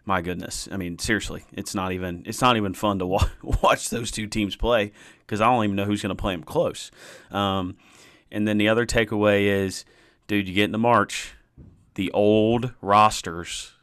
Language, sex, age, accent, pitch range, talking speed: English, male, 30-49, American, 90-105 Hz, 200 wpm